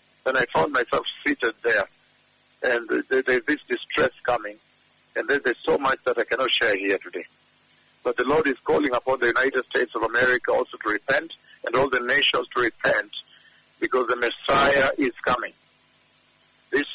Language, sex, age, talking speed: English, male, 60-79, 165 wpm